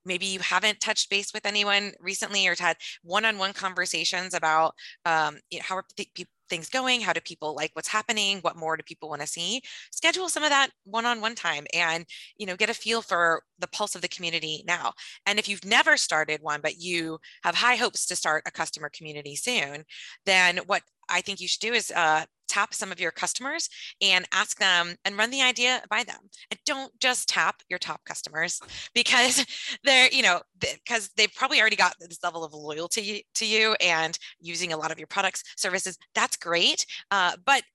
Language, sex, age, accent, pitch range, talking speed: English, female, 20-39, American, 165-225 Hz, 195 wpm